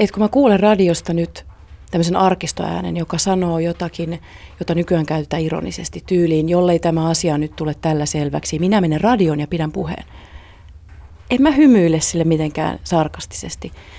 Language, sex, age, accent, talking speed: Finnish, female, 30-49, native, 150 wpm